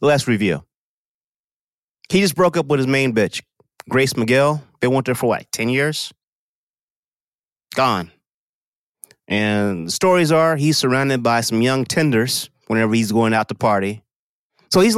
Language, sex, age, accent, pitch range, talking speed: English, male, 30-49, American, 120-185 Hz, 155 wpm